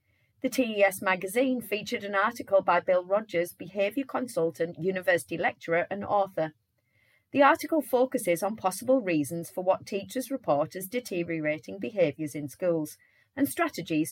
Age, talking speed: 40-59, 135 wpm